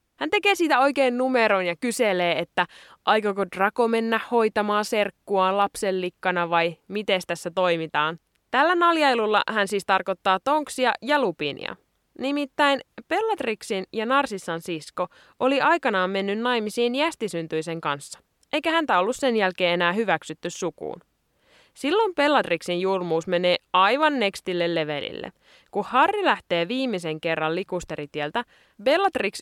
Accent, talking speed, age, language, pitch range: native, 120 wpm, 20-39, Finnish, 175-265 Hz